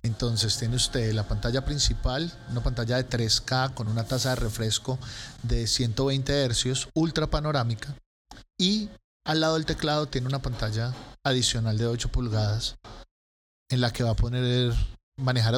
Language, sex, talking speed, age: Spanish, male, 150 wpm, 30-49